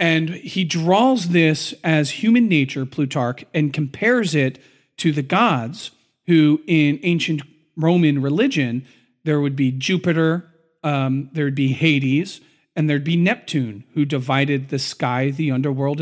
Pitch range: 135-160 Hz